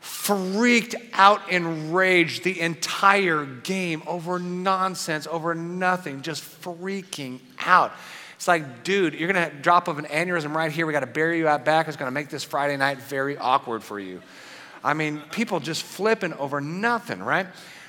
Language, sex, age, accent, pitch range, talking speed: English, male, 40-59, American, 140-175 Hz, 160 wpm